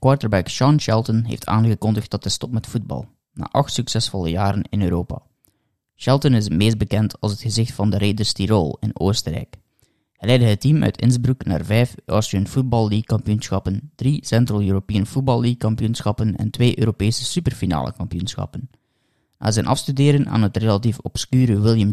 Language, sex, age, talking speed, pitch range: Dutch, male, 20-39, 165 wpm, 105-120 Hz